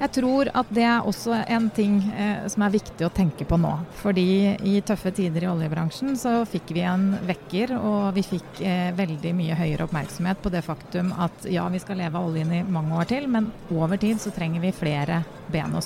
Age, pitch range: 30-49, 165-200 Hz